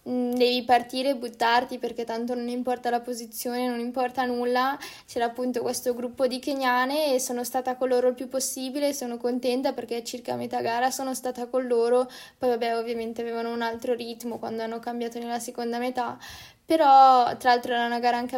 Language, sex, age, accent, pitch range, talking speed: Italian, female, 10-29, native, 240-260 Hz, 190 wpm